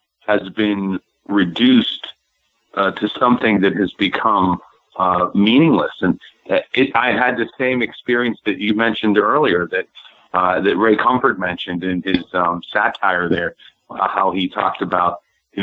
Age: 50-69